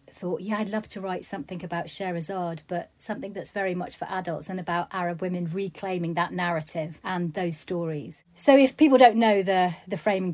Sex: female